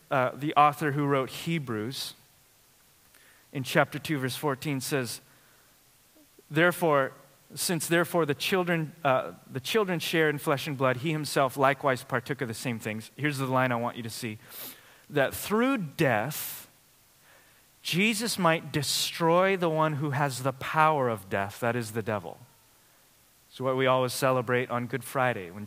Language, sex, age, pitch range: English, male, 30-49, 130-170 Hz